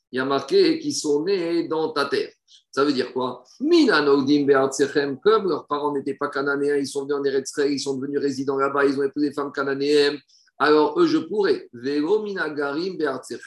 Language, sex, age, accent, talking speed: French, male, 50-69, French, 180 wpm